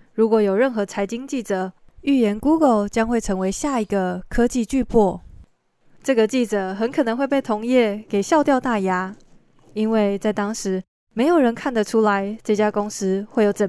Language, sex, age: Chinese, female, 20-39